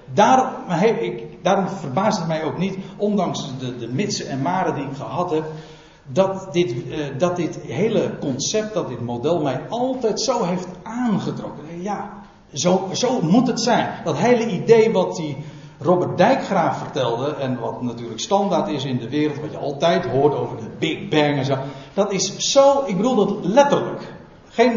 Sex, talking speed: male, 180 wpm